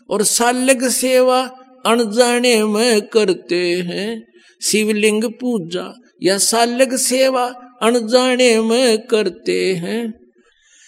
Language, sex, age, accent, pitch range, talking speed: Hindi, male, 50-69, native, 170-245 Hz, 90 wpm